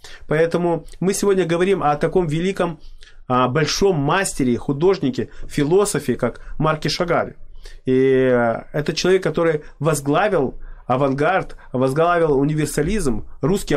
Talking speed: 100 wpm